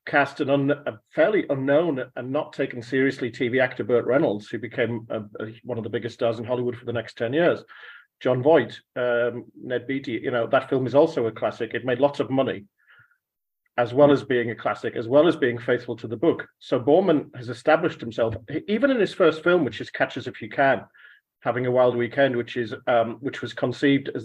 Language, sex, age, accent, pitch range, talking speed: English, male, 40-59, British, 120-150 Hz, 220 wpm